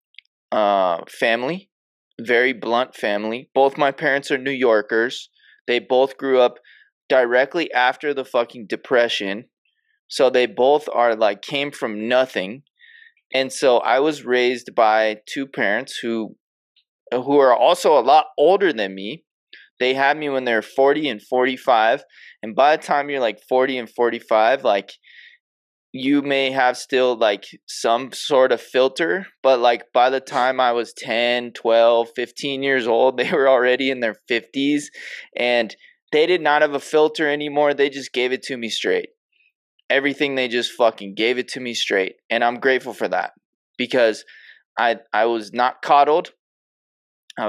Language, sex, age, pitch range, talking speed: English, male, 20-39, 120-140 Hz, 160 wpm